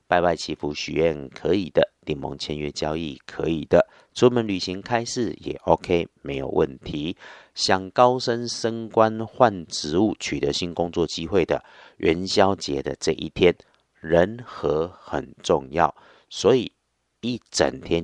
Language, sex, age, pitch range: Chinese, male, 50-69, 75-100 Hz